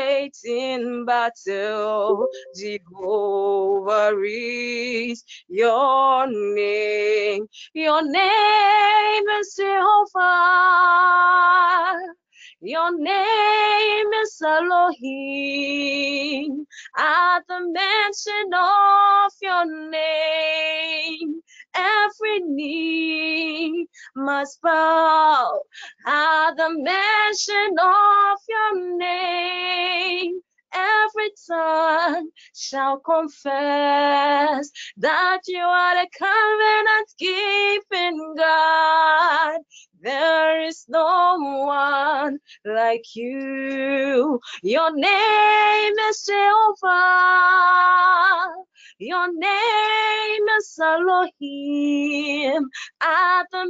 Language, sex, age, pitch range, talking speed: English, female, 20-39, 290-400 Hz, 65 wpm